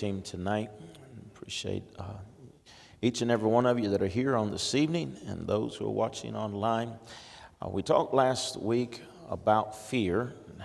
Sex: male